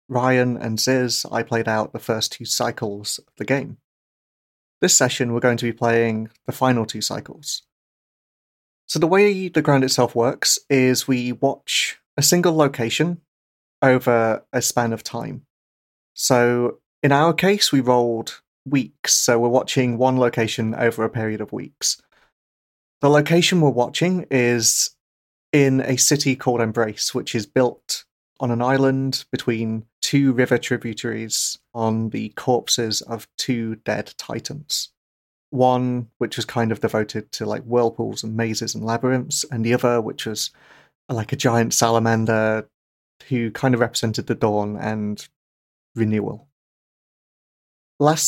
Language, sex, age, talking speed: English, male, 30-49, 145 wpm